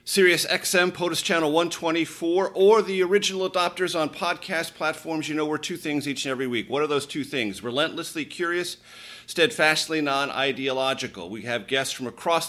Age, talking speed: 40-59, 170 wpm